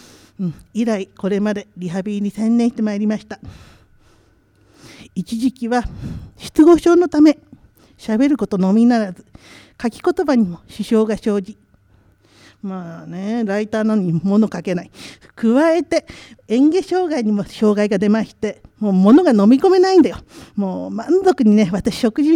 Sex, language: female, Japanese